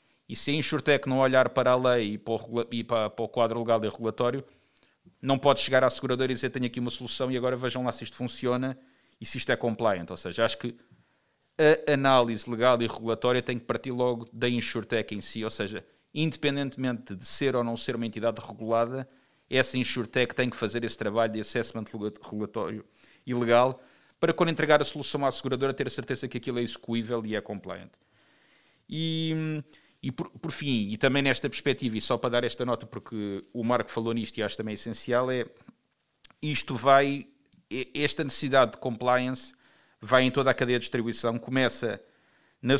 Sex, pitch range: male, 115-130 Hz